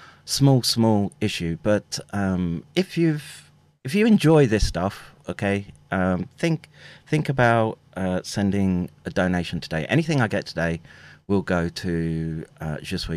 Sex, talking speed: male, 140 wpm